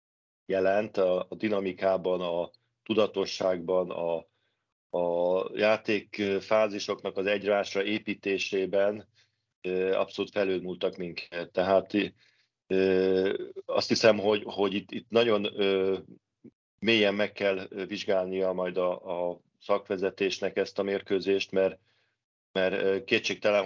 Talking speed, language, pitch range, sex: 95 wpm, Hungarian, 95-105 Hz, male